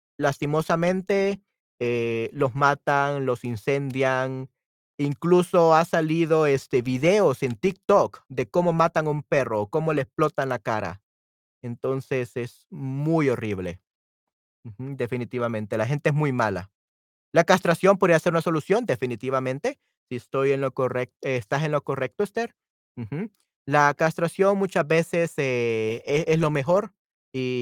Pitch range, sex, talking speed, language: 120-165 Hz, male, 140 wpm, Spanish